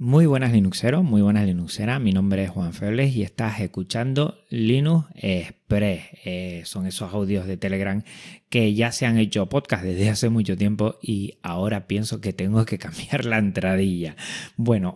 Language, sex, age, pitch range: Spanish, male, 30-49, 100-125 Hz